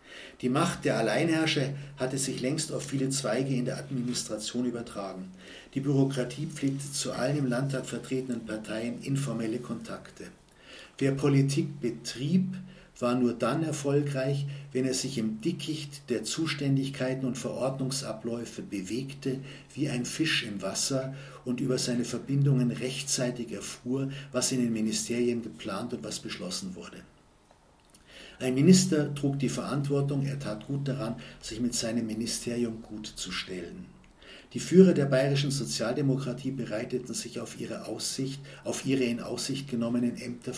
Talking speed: 140 wpm